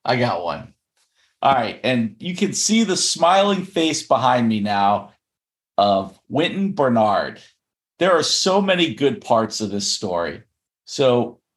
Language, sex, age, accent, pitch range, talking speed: English, male, 50-69, American, 105-155 Hz, 145 wpm